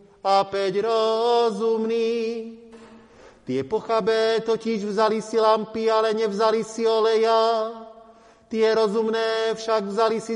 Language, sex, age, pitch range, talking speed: Slovak, male, 40-59, 200-225 Hz, 105 wpm